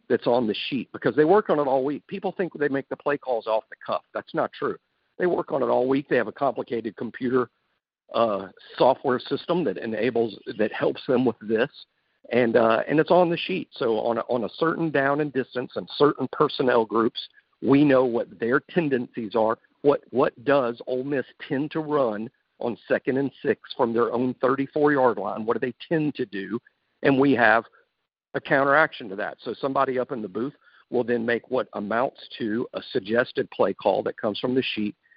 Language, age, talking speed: English, 50-69, 210 wpm